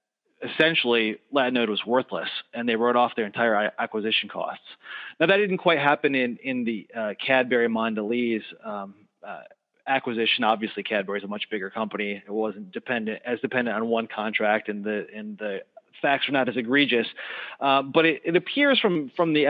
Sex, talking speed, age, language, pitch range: male, 180 wpm, 30-49, English, 110-145 Hz